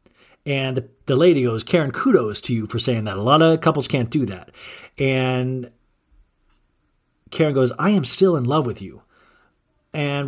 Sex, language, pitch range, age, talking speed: male, English, 110-155 Hz, 40-59, 170 wpm